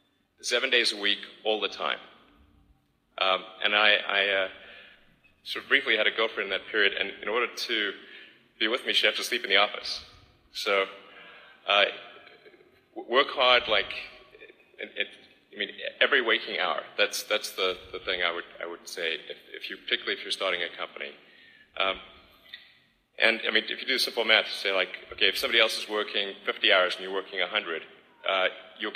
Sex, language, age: male, Chinese, 30-49